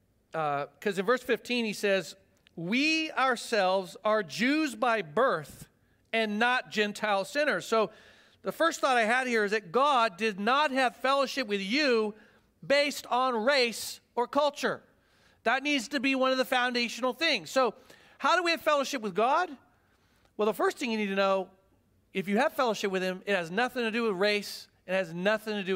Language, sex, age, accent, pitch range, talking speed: English, male, 40-59, American, 205-265 Hz, 190 wpm